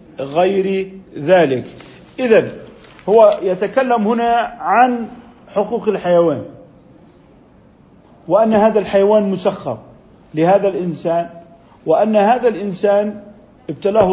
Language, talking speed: Arabic, 80 wpm